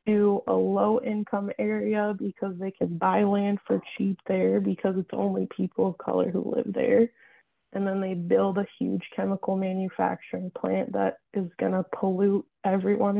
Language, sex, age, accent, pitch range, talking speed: English, female, 20-39, American, 190-215 Hz, 165 wpm